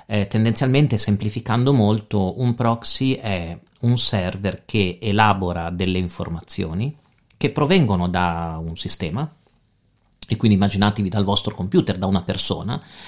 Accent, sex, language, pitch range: native, male, Italian, 95-135 Hz